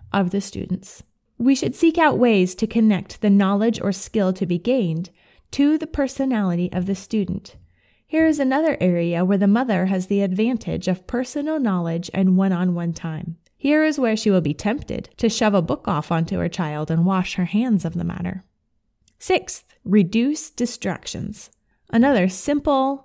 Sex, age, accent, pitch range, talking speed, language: female, 20-39, American, 185-240 Hz, 170 wpm, English